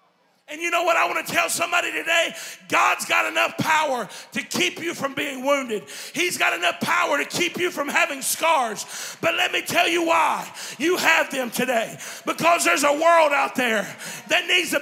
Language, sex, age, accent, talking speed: English, male, 40-59, American, 200 wpm